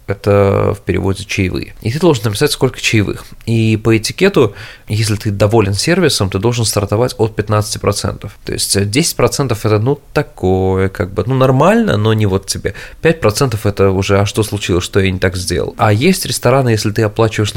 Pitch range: 100-115 Hz